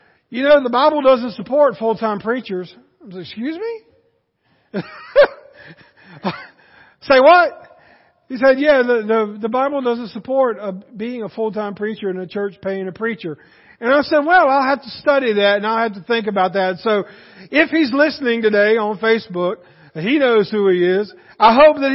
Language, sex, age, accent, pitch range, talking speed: English, male, 50-69, American, 215-280 Hz, 180 wpm